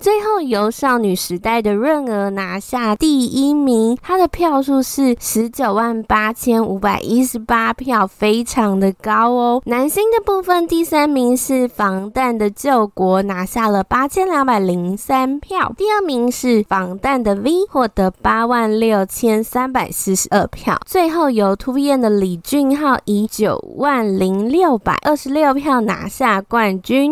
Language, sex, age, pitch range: Chinese, female, 10-29, 210-285 Hz